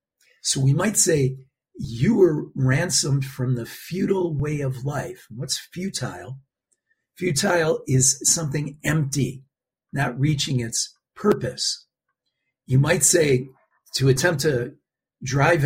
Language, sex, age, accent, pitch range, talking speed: English, male, 50-69, American, 130-150 Hz, 115 wpm